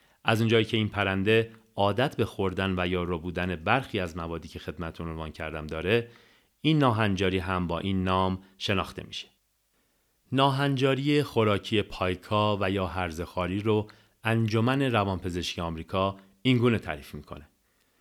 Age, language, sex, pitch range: 40-59, Persian, male, 90-115 Hz